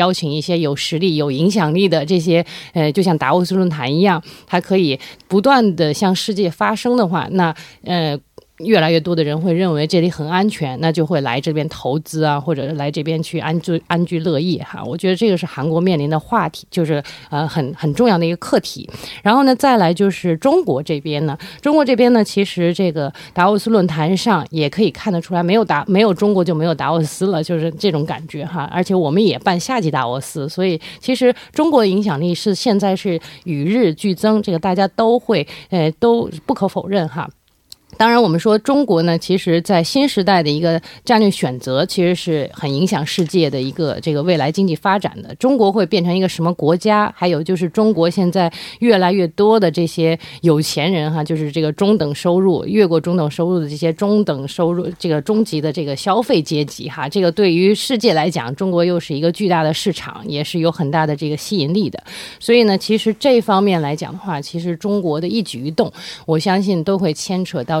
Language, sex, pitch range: Korean, female, 155-195 Hz